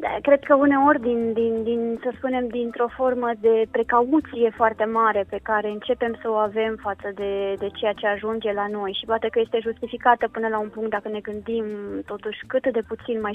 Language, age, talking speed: Romanian, 20-39, 190 wpm